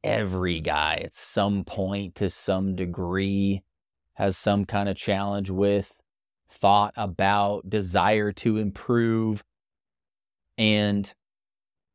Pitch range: 90-115 Hz